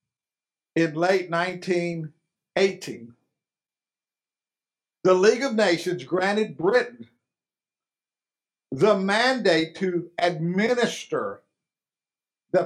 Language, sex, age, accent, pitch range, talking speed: English, male, 50-69, American, 150-200 Hz, 65 wpm